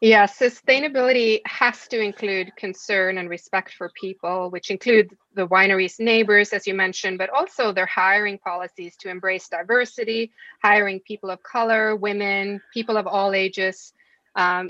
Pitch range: 185-215 Hz